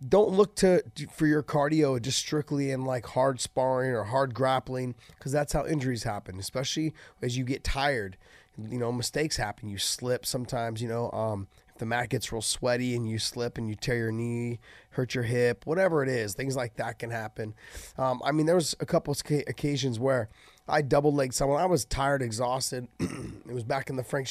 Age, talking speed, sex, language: 30-49, 210 wpm, male, English